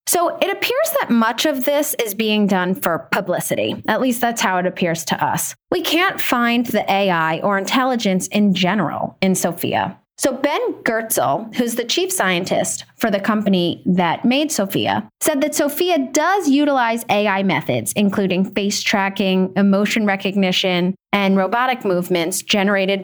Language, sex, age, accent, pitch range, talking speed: English, female, 20-39, American, 190-265 Hz, 155 wpm